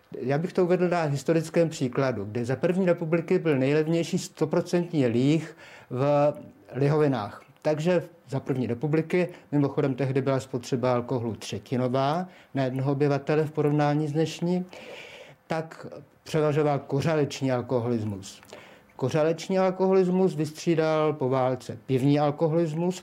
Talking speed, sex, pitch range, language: 115 wpm, male, 130-170 Hz, Czech